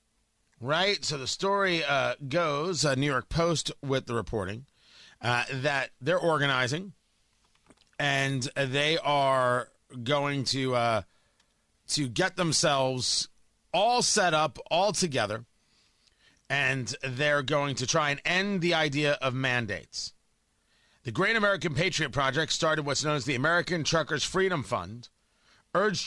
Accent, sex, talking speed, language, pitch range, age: American, male, 130 wpm, English, 120-165 Hz, 30-49